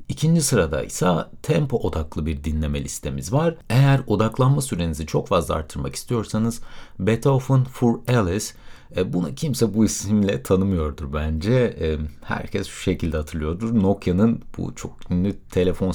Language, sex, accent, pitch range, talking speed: Turkish, male, native, 85-130 Hz, 130 wpm